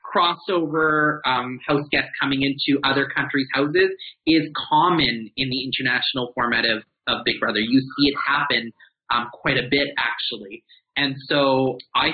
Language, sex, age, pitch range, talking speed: English, male, 30-49, 130-185 Hz, 155 wpm